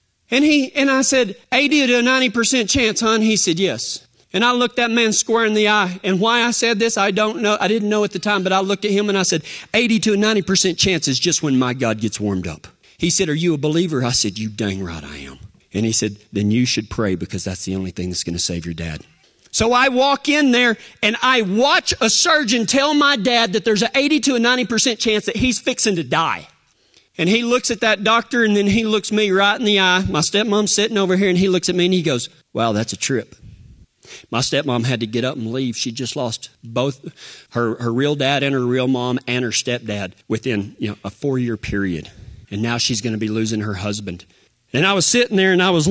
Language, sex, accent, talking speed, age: English, male, American, 245 wpm, 40-59